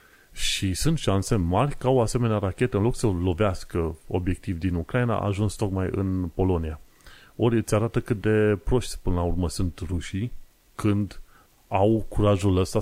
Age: 30-49